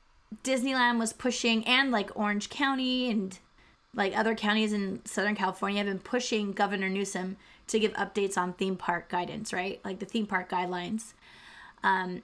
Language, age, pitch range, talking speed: English, 20-39, 200-260 Hz, 160 wpm